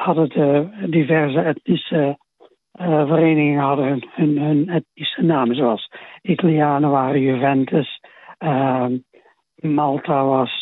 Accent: Dutch